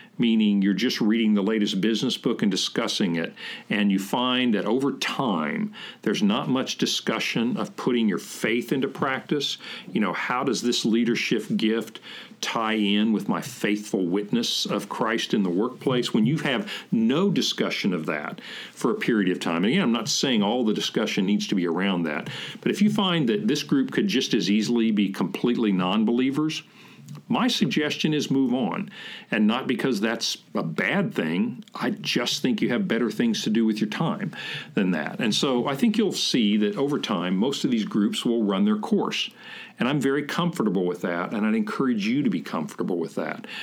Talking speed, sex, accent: 195 wpm, male, American